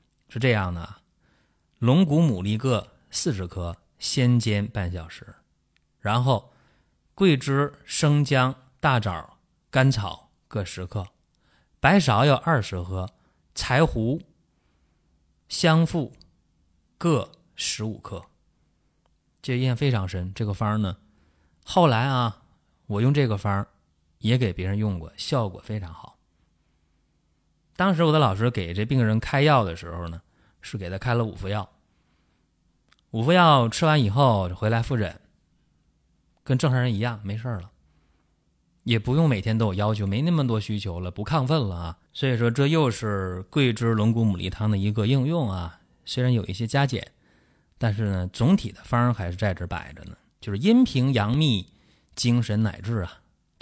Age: 20-39